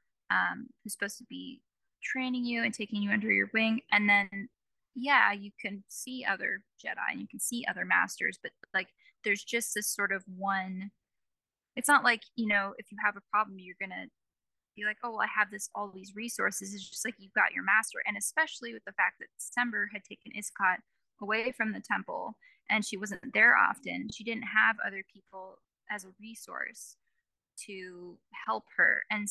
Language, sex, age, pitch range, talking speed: English, female, 10-29, 200-230 Hz, 195 wpm